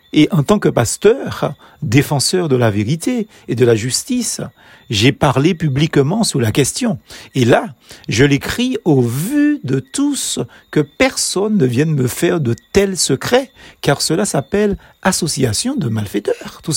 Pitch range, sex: 130-205 Hz, male